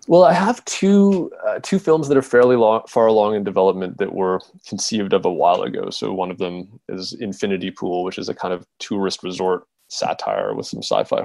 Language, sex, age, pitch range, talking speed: English, male, 20-39, 95-140 Hz, 215 wpm